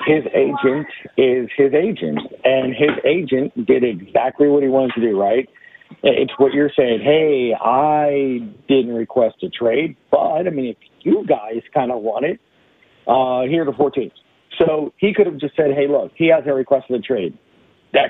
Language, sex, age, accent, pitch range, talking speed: English, male, 50-69, American, 130-150 Hz, 180 wpm